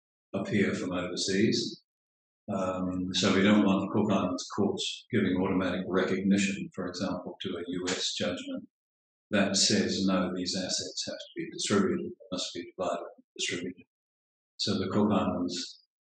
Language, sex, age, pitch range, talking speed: English, male, 50-69, 95-105 Hz, 145 wpm